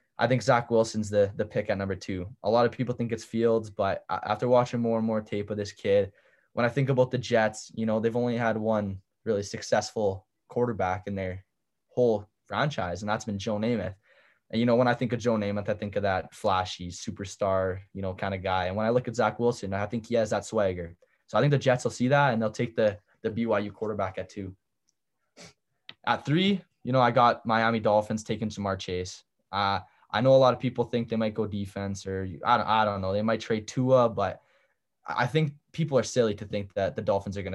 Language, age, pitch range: English, 10-29, 100-120 Hz